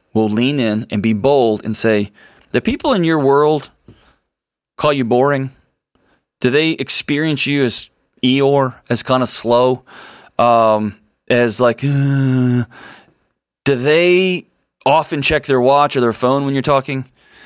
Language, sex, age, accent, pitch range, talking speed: English, male, 20-39, American, 120-150 Hz, 145 wpm